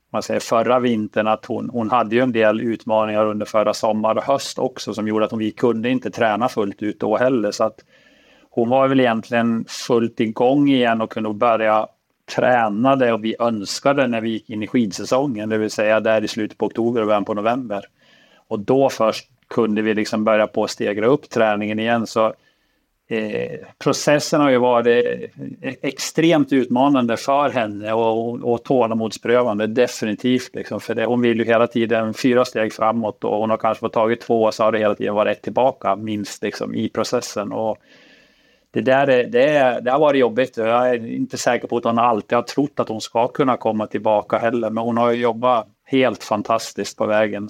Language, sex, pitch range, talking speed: Swedish, male, 110-125 Hz, 200 wpm